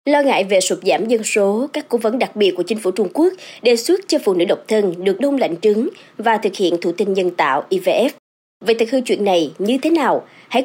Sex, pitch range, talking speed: male, 200-280 Hz, 255 wpm